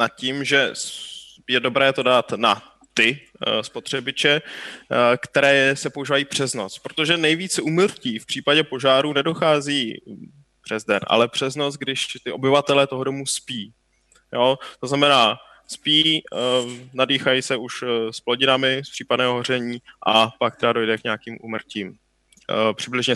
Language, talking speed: Czech, 135 wpm